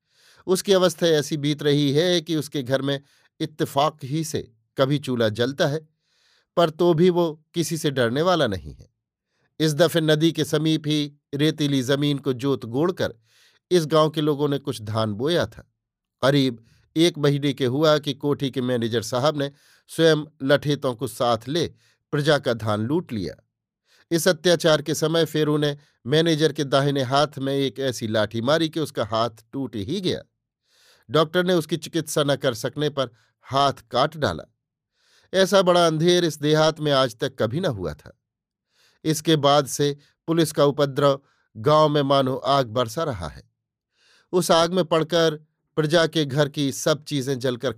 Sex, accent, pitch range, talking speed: male, native, 135-160 Hz, 170 wpm